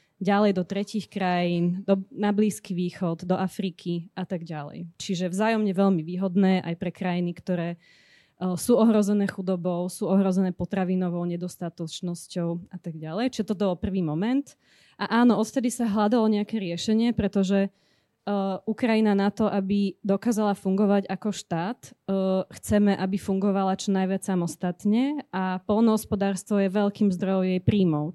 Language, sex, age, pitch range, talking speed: Slovak, female, 20-39, 180-205 Hz, 145 wpm